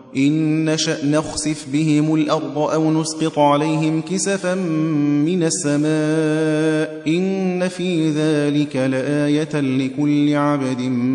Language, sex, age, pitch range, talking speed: Persian, male, 30-49, 135-180 Hz, 90 wpm